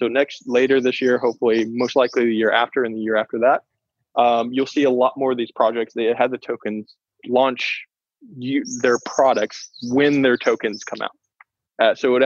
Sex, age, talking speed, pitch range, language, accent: male, 20-39, 195 wpm, 115-135 Hz, English, American